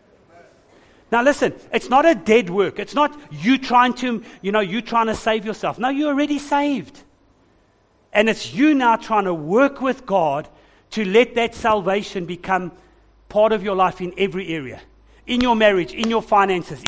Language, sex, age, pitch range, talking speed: English, male, 60-79, 185-240 Hz, 180 wpm